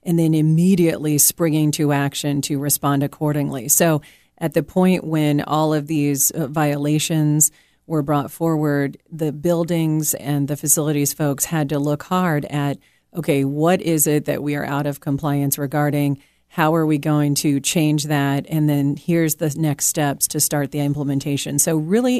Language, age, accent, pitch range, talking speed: English, 40-59, American, 145-160 Hz, 170 wpm